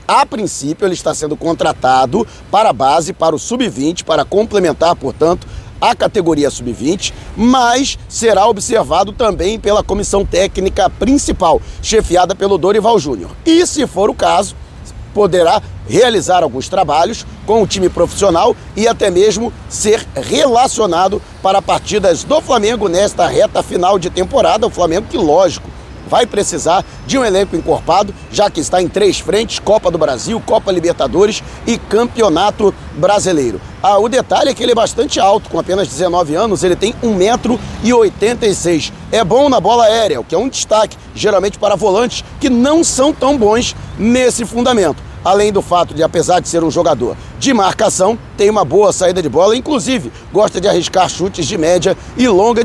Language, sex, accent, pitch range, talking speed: Portuguese, male, Brazilian, 180-245 Hz, 165 wpm